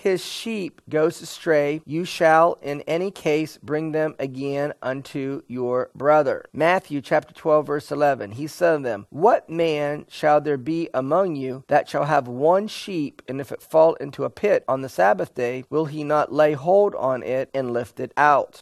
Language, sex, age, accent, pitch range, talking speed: English, male, 40-59, American, 135-160 Hz, 185 wpm